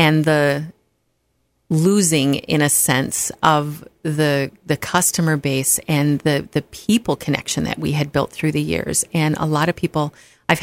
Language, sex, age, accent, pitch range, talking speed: English, female, 30-49, American, 145-170 Hz, 165 wpm